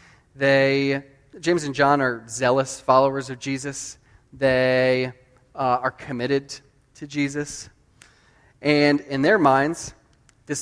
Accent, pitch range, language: American, 125-150 Hz, English